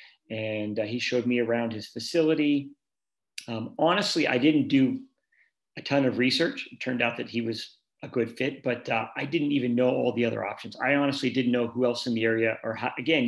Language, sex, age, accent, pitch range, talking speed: English, male, 40-59, American, 115-135 Hz, 210 wpm